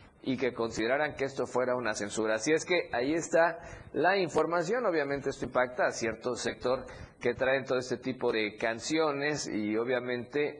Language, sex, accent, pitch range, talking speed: Spanish, male, Mexican, 115-160 Hz, 170 wpm